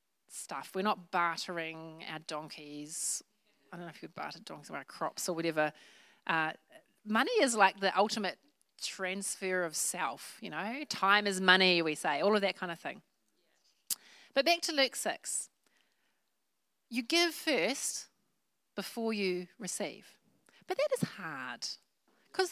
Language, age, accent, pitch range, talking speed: English, 30-49, Australian, 170-225 Hz, 150 wpm